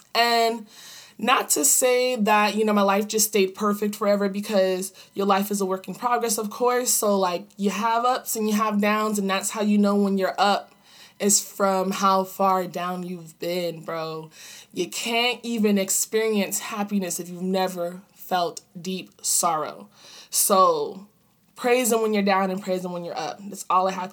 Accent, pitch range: American, 190-225 Hz